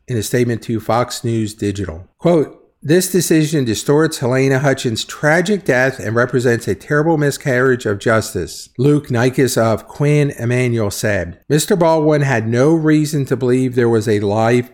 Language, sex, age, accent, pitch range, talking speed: English, male, 50-69, American, 110-140 Hz, 160 wpm